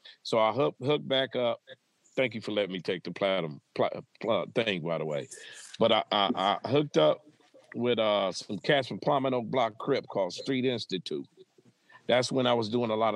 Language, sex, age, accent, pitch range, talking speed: English, male, 50-69, American, 110-145 Hz, 210 wpm